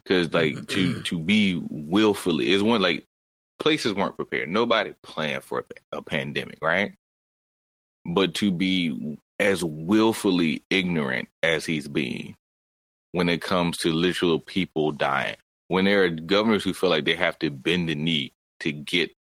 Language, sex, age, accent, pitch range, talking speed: English, male, 30-49, American, 80-100 Hz, 155 wpm